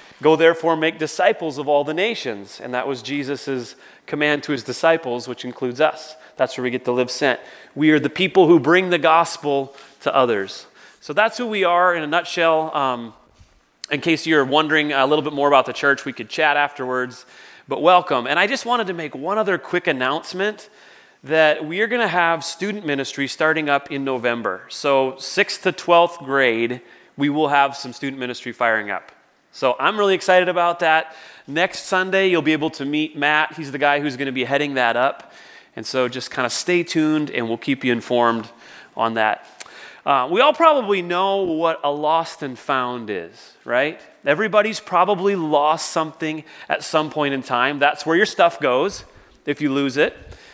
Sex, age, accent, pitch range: male, 30-49, American, 135-170 Hz